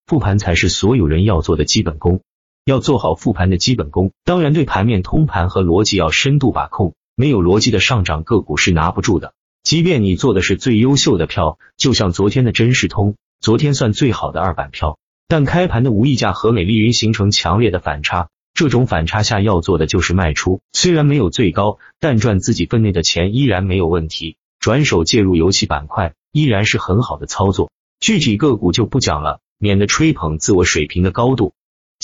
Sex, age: male, 30-49